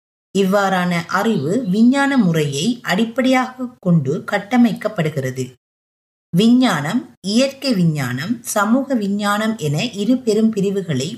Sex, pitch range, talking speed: female, 160-230 Hz, 85 wpm